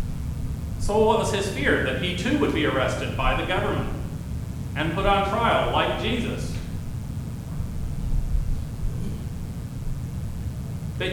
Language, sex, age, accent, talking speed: English, male, 40-59, American, 115 wpm